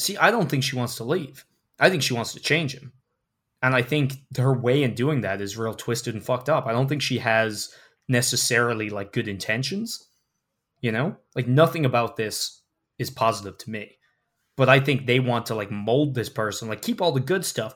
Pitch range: 115-140 Hz